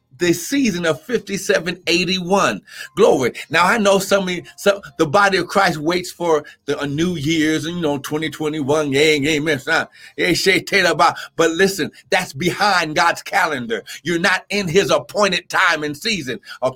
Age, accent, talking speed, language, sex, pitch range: 50-69, American, 140 wpm, English, male, 130-170 Hz